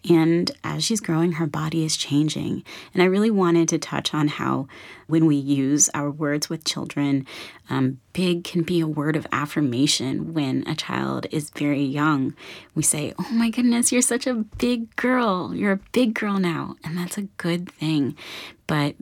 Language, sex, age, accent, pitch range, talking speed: English, female, 30-49, American, 155-180 Hz, 185 wpm